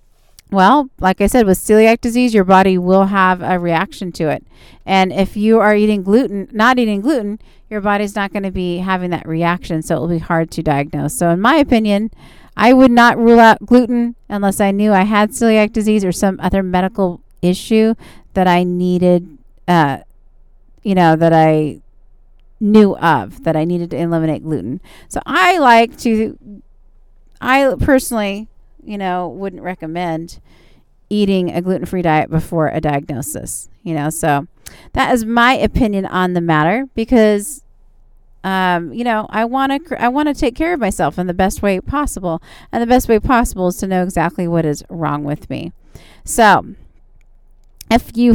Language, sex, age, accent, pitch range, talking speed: English, female, 40-59, American, 175-225 Hz, 175 wpm